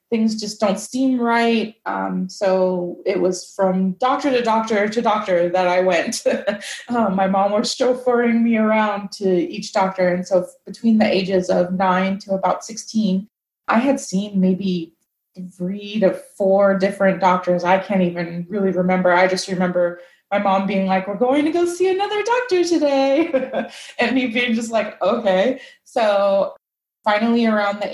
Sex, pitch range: female, 190-245 Hz